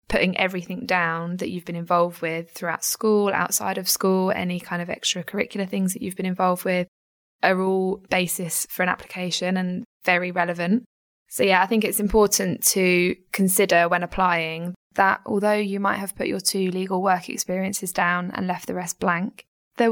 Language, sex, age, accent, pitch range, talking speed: English, female, 10-29, British, 180-195 Hz, 180 wpm